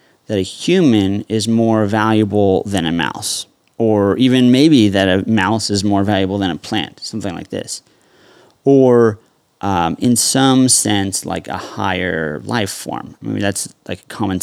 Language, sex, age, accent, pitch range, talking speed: English, male, 30-49, American, 95-115 Hz, 165 wpm